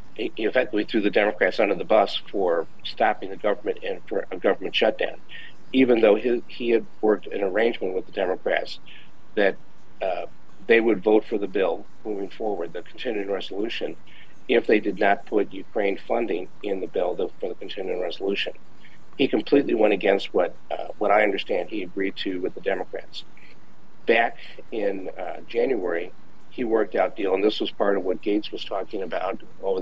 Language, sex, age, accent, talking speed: English, male, 50-69, American, 180 wpm